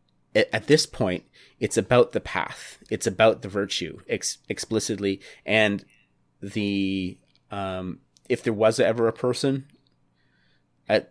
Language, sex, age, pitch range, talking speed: English, male, 30-49, 95-110 Hz, 125 wpm